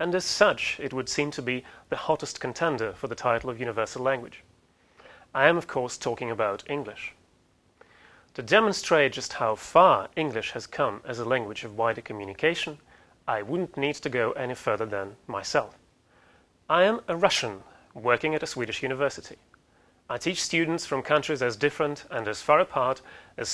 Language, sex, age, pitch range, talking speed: English, male, 30-49, 130-155 Hz, 175 wpm